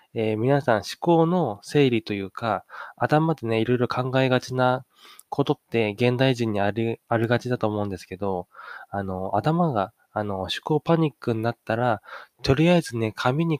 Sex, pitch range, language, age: male, 105-140 Hz, Japanese, 20-39